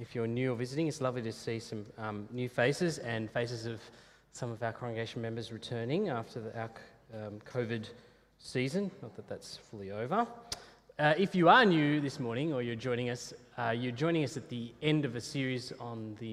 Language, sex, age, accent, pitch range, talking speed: English, male, 30-49, Australian, 110-145 Hz, 205 wpm